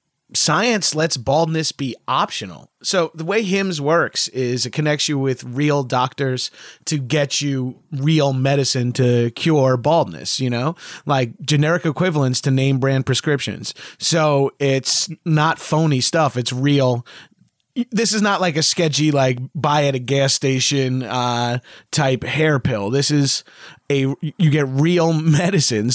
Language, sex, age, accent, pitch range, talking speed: English, male, 30-49, American, 130-155 Hz, 150 wpm